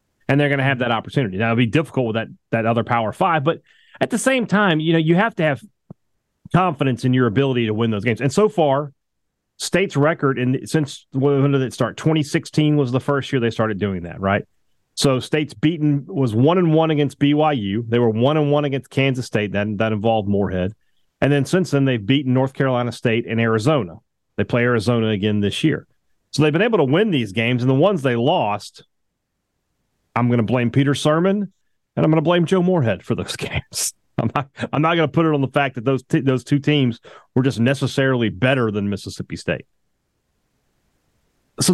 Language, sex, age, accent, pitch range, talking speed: English, male, 30-49, American, 120-155 Hz, 215 wpm